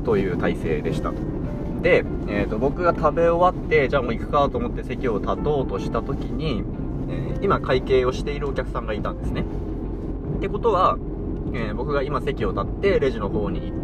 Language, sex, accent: Japanese, male, native